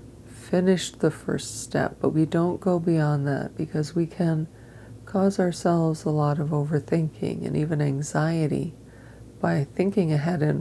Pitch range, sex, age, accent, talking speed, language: 120-170 Hz, female, 40-59, American, 145 wpm, English